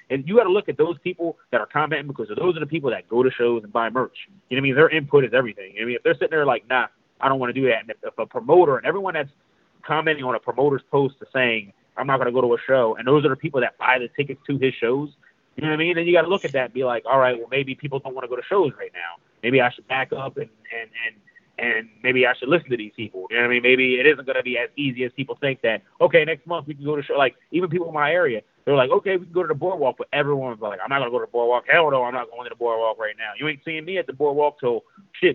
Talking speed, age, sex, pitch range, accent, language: 335 wpm, 30-49, male, 125-170 Hz, American, English